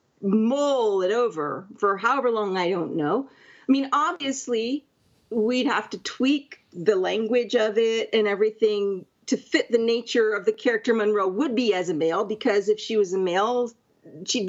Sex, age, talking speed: female, 40-59, 175 wpm